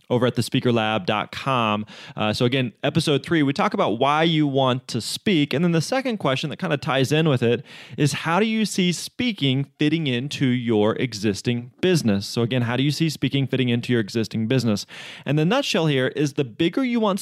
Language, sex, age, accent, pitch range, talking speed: English, male, 20-39, American, 120-155 Hz, 210 wpm